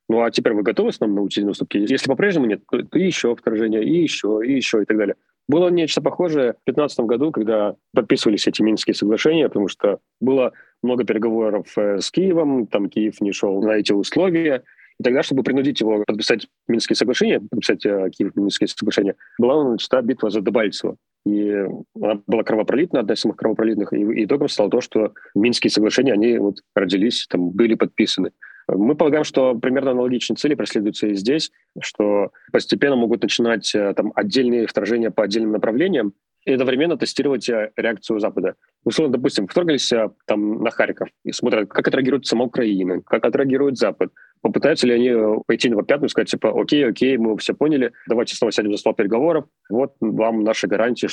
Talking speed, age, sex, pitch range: 175 wpm, 30-49, male, 105-130 Hz